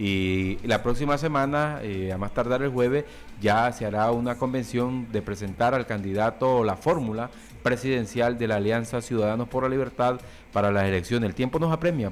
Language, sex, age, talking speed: Spanish, male, 30-49, 180 wpm